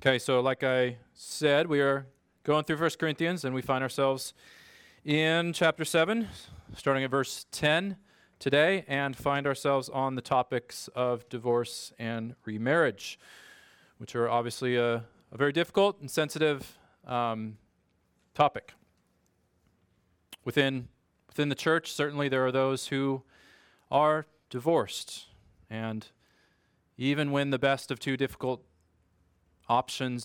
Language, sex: English, male